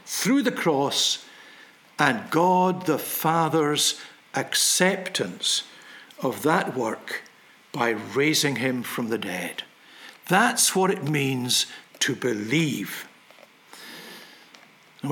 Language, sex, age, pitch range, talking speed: English, male, 60-79, 155-200 Hz, 95 wpm